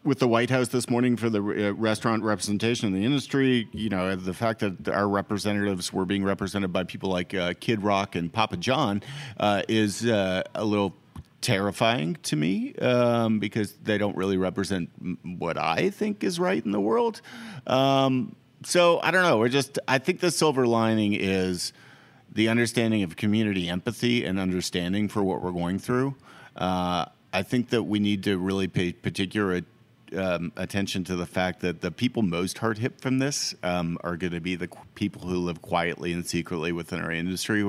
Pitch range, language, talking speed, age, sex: 90-115 Hz, English, 185 wpm, 40-59, male